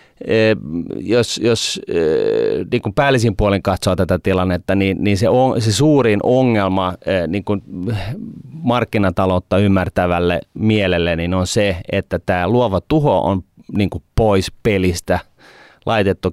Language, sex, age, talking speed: Finnish, male, 30-49, 120 wpm